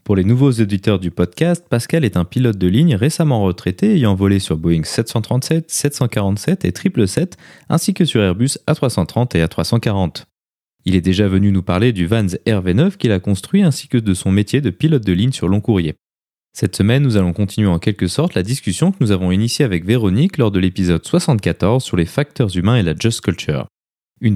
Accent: French